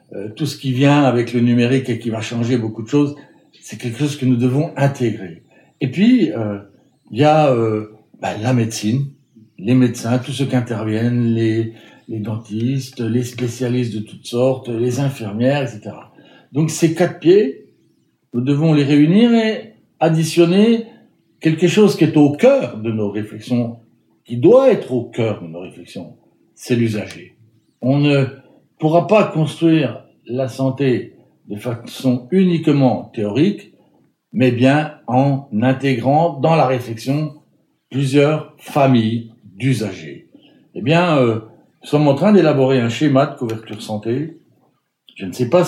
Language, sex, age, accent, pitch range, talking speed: French, male, 60-79, French, 115-150 Hz, 150 wpm